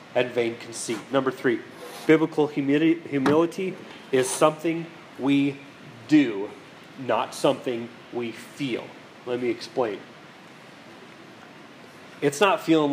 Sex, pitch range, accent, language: male, 130-170 Hz, American, English